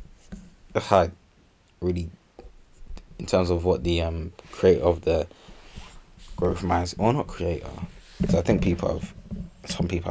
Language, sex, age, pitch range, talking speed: English, male, 20-39, 85-95 Hz, 150 wpm